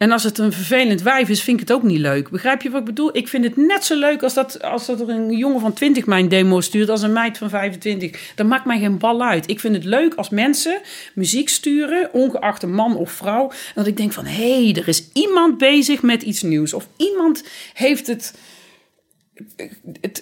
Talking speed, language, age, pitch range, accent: 235 wpm, Dutch, 40-59, 190-265 Hz, Dutch